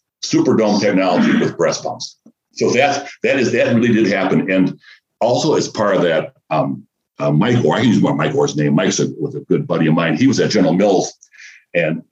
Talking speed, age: 215 wpm, 60-79